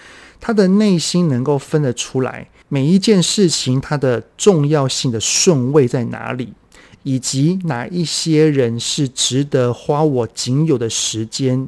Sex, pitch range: male, 120-155 Hz